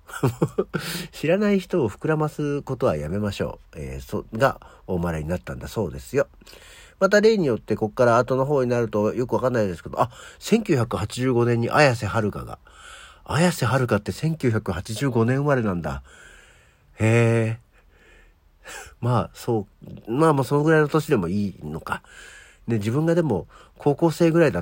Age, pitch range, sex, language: 50-69, 100-150 Hz, male, Japanese